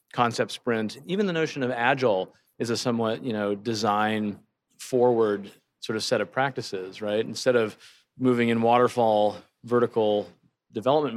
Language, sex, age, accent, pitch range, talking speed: English, male, 30-49, American, 105-125 Hz, 145 wpm